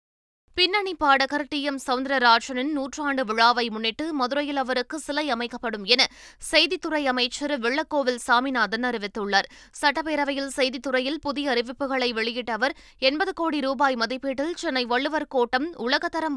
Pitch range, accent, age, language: 245-290 Hz, native, 20-39, Tamil